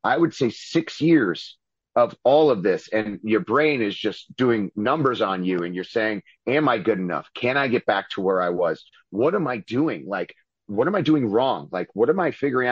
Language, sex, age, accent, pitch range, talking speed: English, male, 30-49, American, 110-150 Hz, 225 wpm